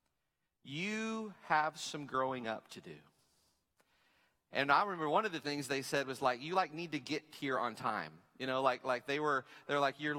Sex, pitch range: male, 130-170 Hz